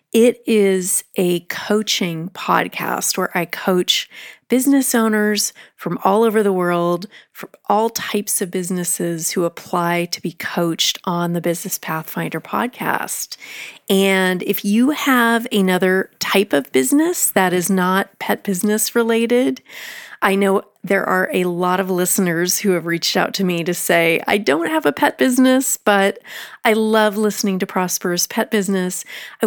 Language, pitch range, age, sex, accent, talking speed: English, 180-215 Hz, 30-49, female, American, 155 wpm